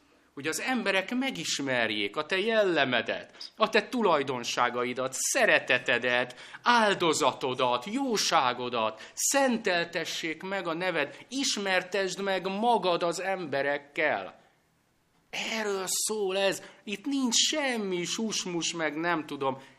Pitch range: 115-195 Hz